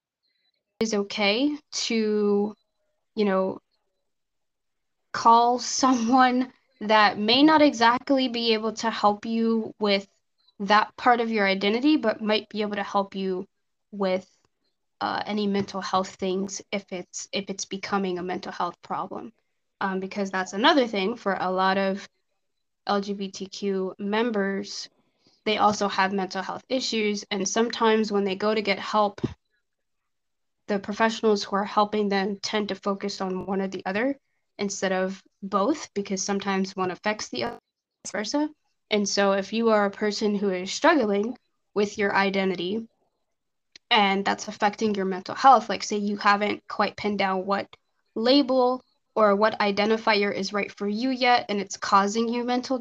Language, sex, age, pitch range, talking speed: English, female, 20-39, 195-225 Hz, 155 wpm